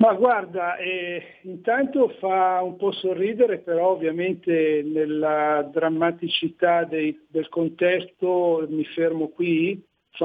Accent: native